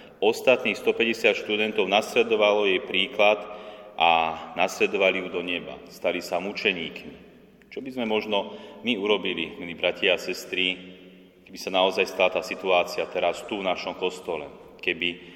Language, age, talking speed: Slovak, 30-49, 140 wpm